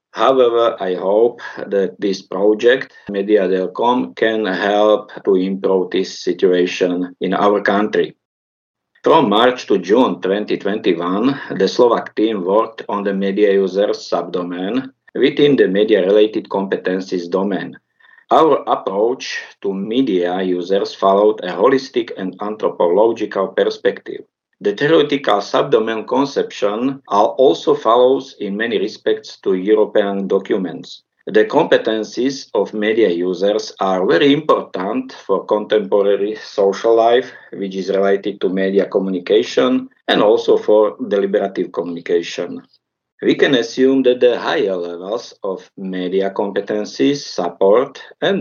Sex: male